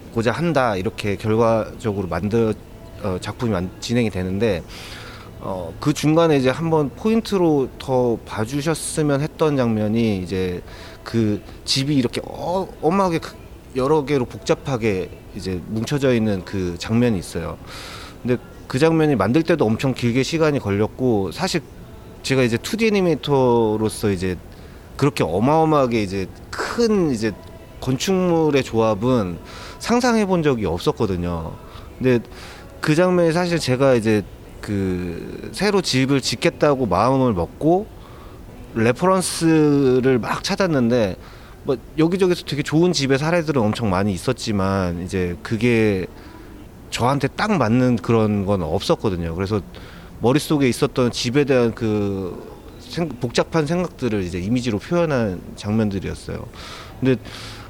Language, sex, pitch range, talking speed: English, male, 100-145 Hz, 105 wpm